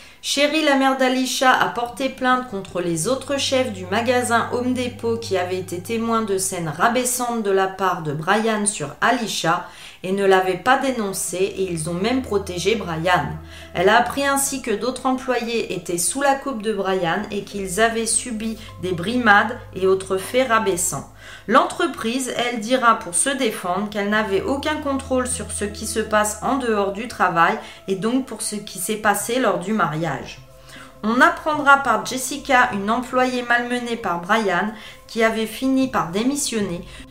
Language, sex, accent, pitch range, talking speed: French, female, French, 190-255 Hz, 170 wpm